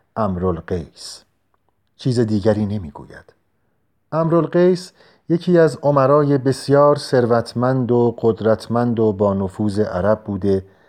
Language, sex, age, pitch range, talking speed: Persian, male, 40-59, 100-135 Hz, 105 wpm